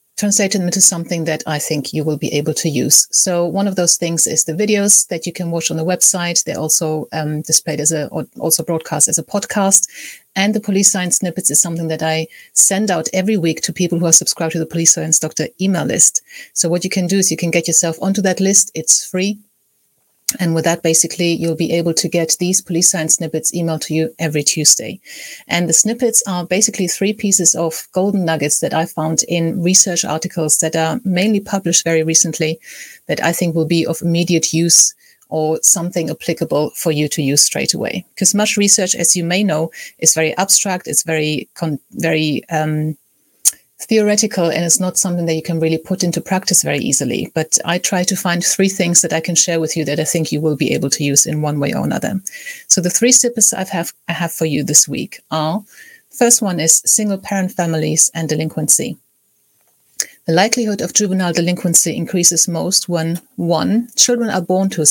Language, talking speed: English, 210 wpm